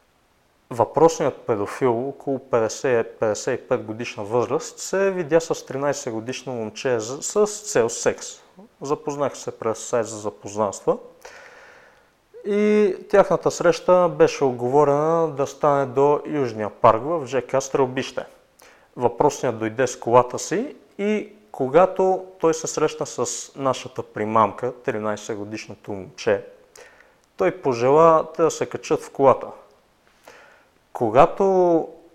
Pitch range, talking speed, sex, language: 125-180 Hz, 105 wpm, male, Bulgarian